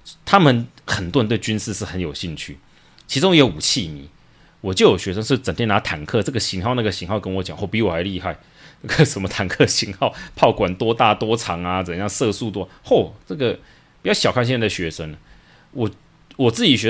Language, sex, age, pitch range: Chinese, male, 30-49, 90-120 Hz